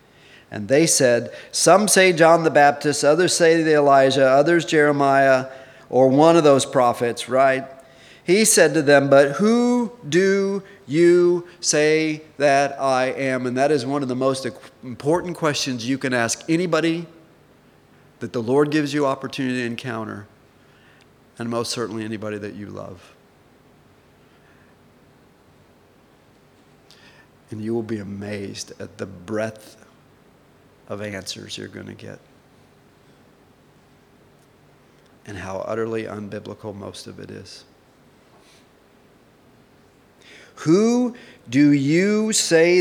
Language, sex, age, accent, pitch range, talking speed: English, male, 50-69, American, 120-155 Hz, 120 wpm